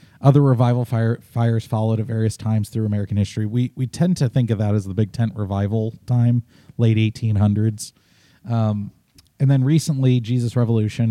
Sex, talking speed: male, 175 wpm